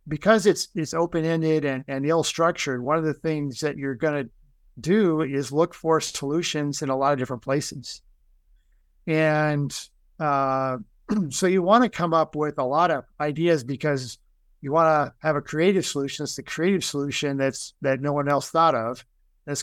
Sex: male